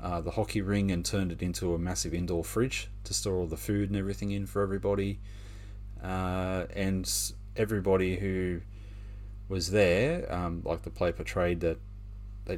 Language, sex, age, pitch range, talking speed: English, male, 30-49, 90-105 Hz, 165 wpm